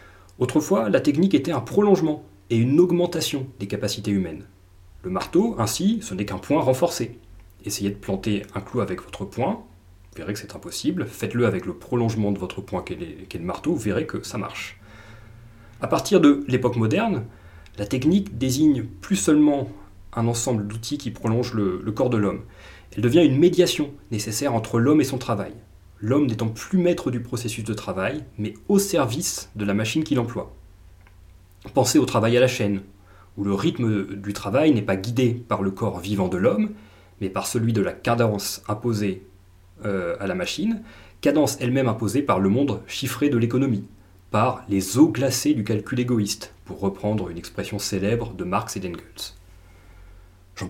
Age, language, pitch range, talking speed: 30-49, French, 100-125 Hz, 180 wpm